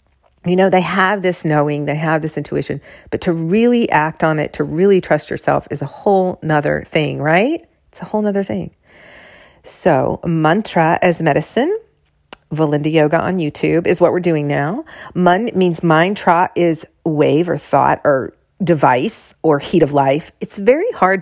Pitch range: 145-175 Hz